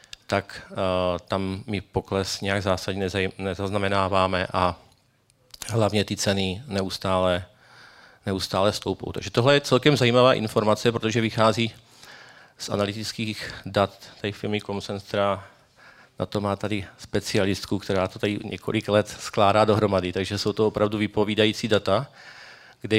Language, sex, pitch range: Czech, male, 95-105 Hz